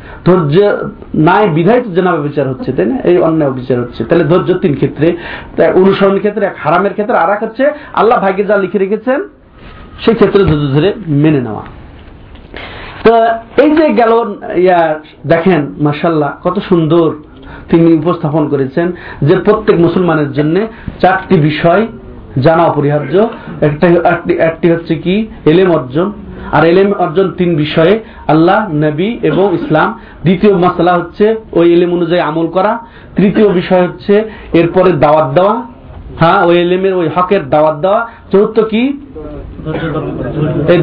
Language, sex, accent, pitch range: Bengali, male, native, 155-195 Hz